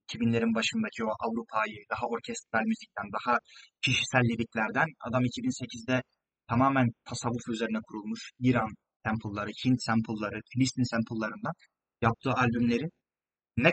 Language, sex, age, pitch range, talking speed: Turkish, male, 30-49, 115-150 Hz, 105 wpm